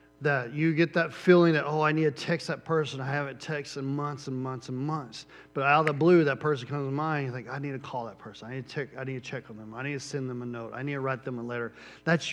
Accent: American